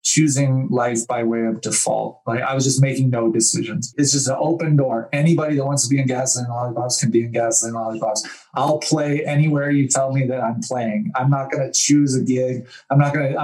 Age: 20-39